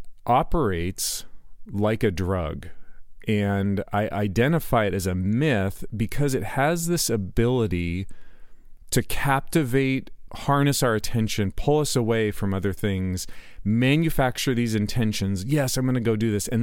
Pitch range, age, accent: 100-120 Hz, 40-59, American